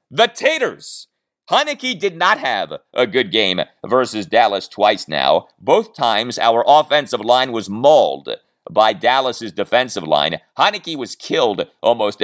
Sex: male